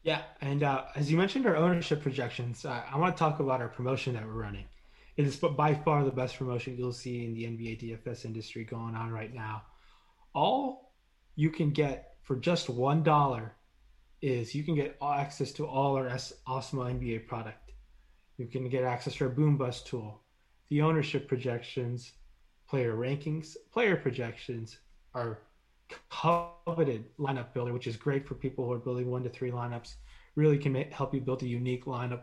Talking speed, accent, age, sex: 185 wpm, American, 20-39, male